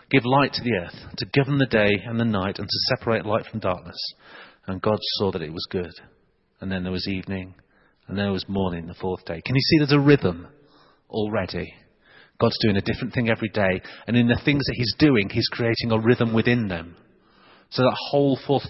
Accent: British